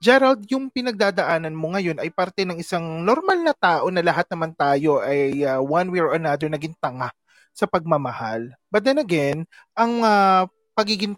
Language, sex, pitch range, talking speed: Filipino, male, 155-210 Hz, 170 wpm